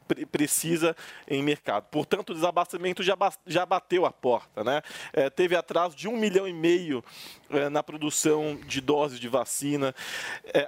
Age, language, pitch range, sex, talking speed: 20-39, Portuguese, 145-190 Hz, male, 165 wpm